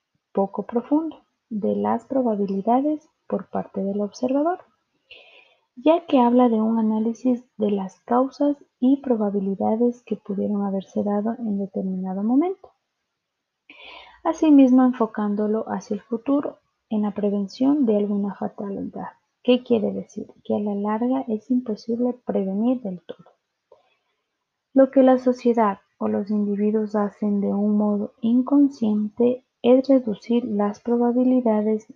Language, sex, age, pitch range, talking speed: Spanish, female, 30-49, 205-260 Hz, 125 wpm